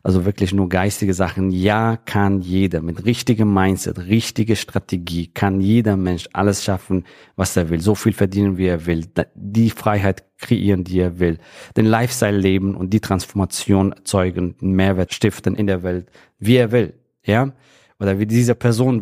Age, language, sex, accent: 40-59, German, male, German